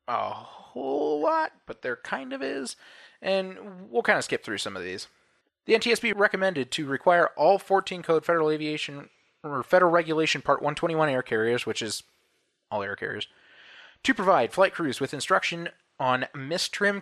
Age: 20-39